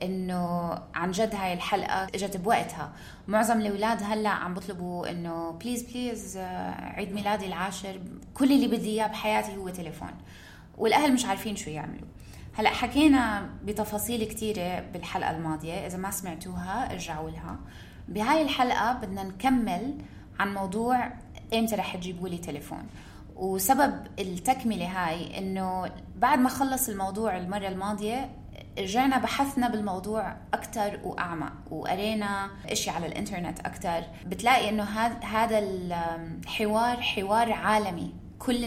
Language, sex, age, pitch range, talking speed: Arabic, female, 20-39, 175-225 Hz, 125 wpm